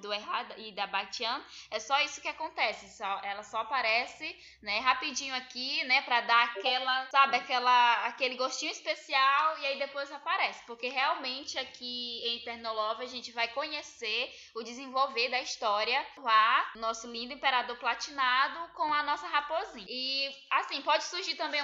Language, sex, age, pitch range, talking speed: Portuguese, female, 10-29, 235-290 Hz, 160 wpm